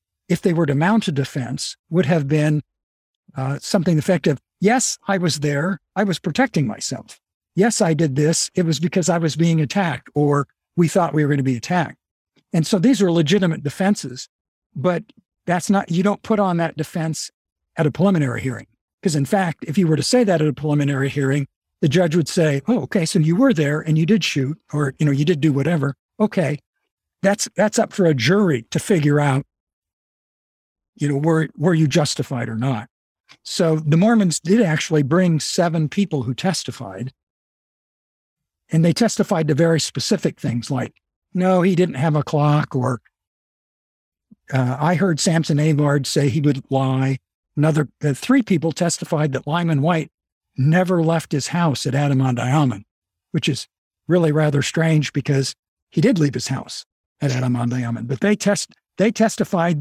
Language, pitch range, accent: English, 140-180 Hz, American